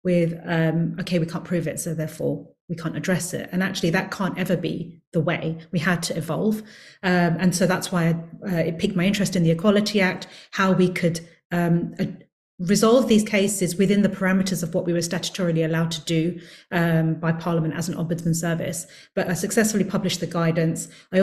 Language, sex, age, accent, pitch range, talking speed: English, female, 30-49, British, 170-195 Hz, 200 wpm